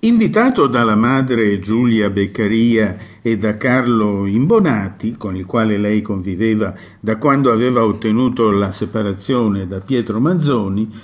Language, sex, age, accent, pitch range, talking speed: Italian, male, 50-69, native, 105-145 Hz, 125 wpm